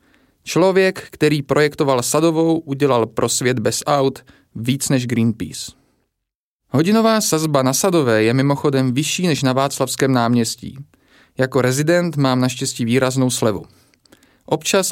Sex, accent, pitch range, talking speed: male, native, 125-160 Hz, 120 wpm